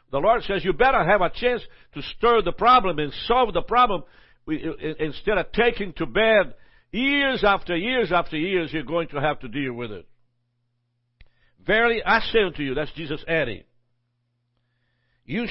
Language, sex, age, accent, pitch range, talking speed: English, male, 60-79, American, 120-195 Hz, 170 wpm